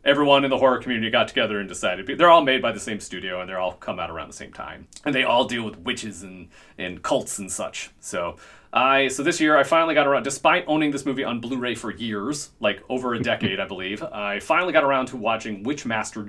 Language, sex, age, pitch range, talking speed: English, male, 30-49, 105-135 Hz, 245 wpm